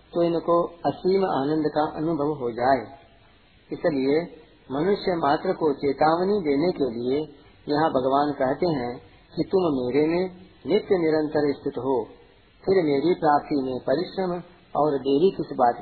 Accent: native